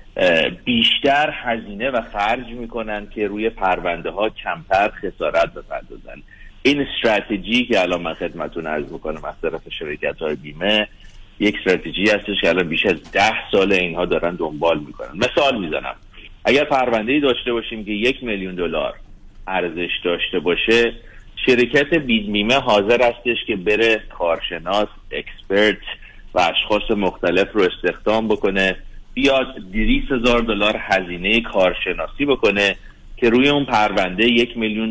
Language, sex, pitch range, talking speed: Persian, male, 100-120 Hz, 135 wpm